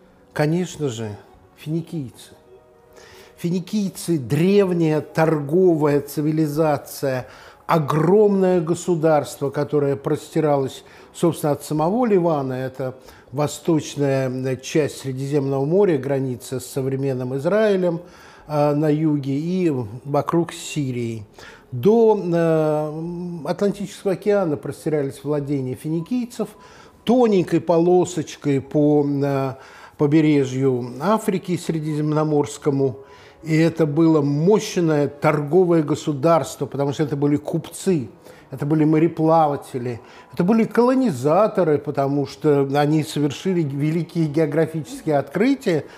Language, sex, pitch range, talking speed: Russian, male, 140-170 Hz, 85 wpm